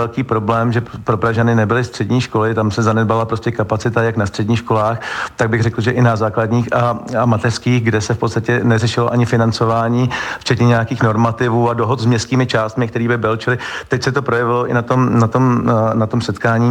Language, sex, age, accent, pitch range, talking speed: Czech, male, 40-59, native, 110-125 Hz, 210 wpm